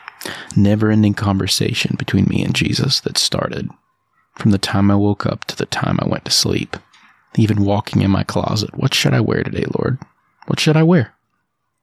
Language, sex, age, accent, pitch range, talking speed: English, male, 30-49, American, 105-120 Hz, 185 wpm